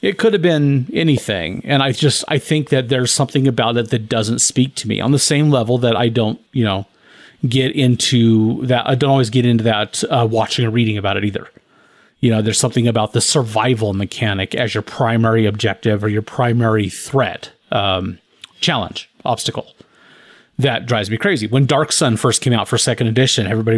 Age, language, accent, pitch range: 30-49, English, American, 115-145 Hz